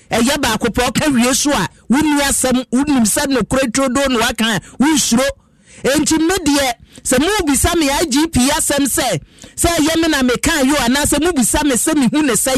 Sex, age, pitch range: male, 40-59, 245-315 Hz